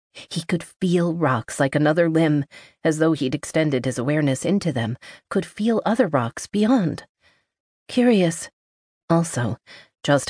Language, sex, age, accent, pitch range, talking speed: English, female, 40-59, American, 135-170 Hz, 135 wpm